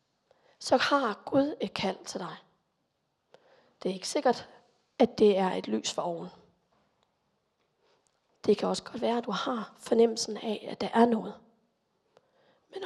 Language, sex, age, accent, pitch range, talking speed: Danish, female, 30-49, native, 195-240 Hz, 155 wpm